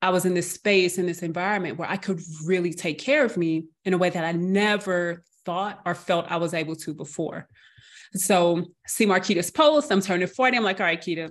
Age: 30-49